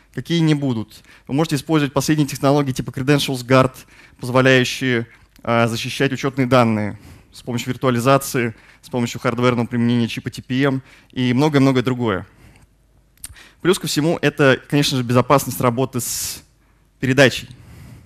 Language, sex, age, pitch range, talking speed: Russian, male, 20-39, 120-140 Hz, 125 wpm